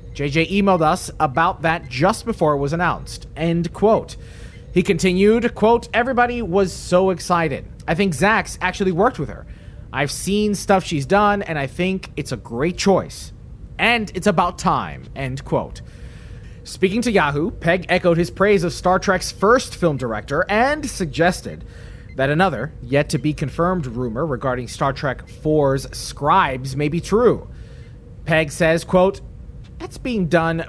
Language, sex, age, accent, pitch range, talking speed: English, male, 30-49, American, 135-190 Hz, 155 wpm